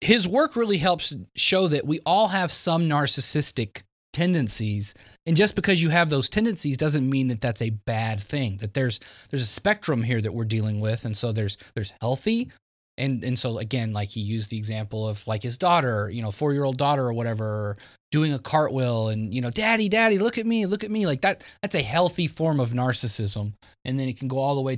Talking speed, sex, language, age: 220 wpm, male, English, 20-39